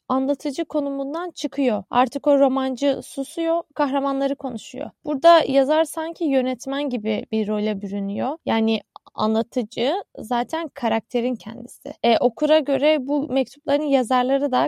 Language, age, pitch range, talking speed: Turkish, 10-29, 230-290 Hz, 120 wpm